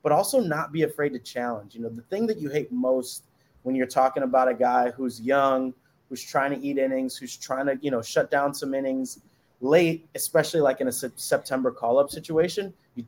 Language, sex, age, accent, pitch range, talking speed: English, male, 30-49, American, 125-155 Hz, 210 wpm